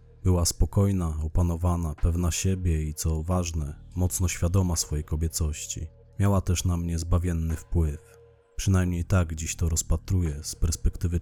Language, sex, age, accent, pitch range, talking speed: Polish, male, 30-49, native, 85-100 Hz, 135 wpm